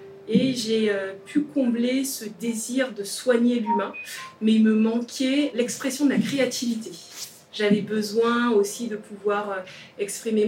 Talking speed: 130 wpm